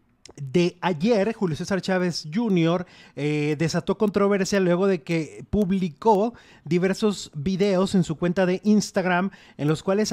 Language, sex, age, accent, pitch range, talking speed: Spanish, male, 30-49, Mexican, 155-185 Hz, 135 wpm